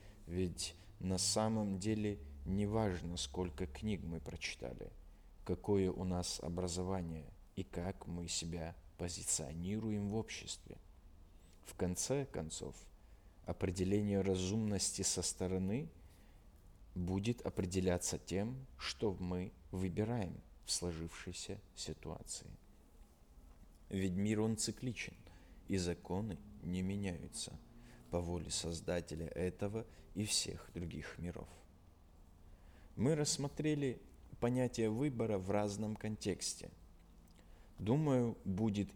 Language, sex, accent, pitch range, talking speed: Russian, male, native, 85-105 Hz, 95 wpm